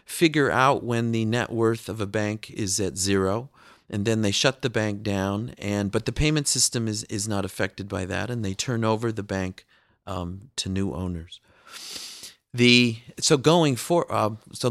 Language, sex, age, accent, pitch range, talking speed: English, male, 40-59, American, 100-125 Hz, 190 wpm